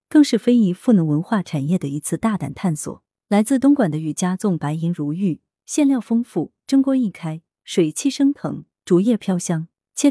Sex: female